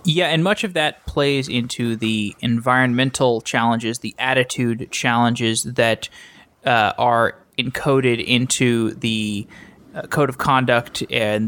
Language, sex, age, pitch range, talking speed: English, male, 20-39, 125-150 Hz, 125 wpm